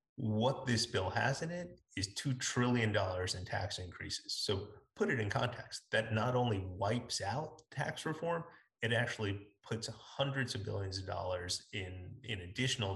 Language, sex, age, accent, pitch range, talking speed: English, male, 30-49, American, 95-115 Hz, 160 wpm